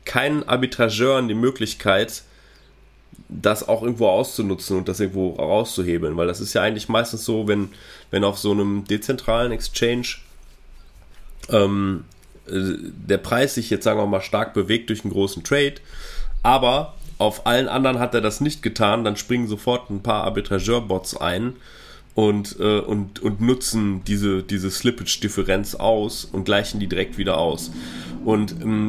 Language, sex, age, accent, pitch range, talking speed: German, male, 30-49, German, 100-130 Hz, 150 wpm